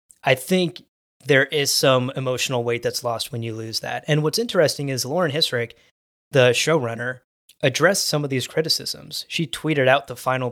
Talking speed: 175 wpm